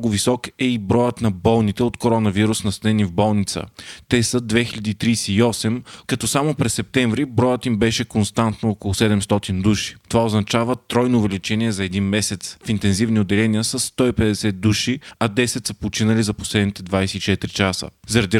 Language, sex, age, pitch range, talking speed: Bulgarian, male, 30-49, 105-125 Hz, 155 wpm